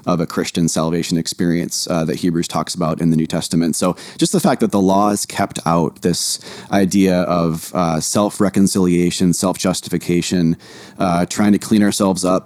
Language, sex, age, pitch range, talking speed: English, male, 30-49, 90-105 Hz, 170 wpm